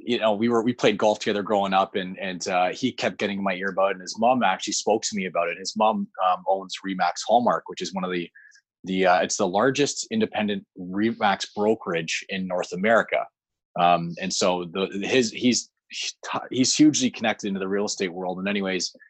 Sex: male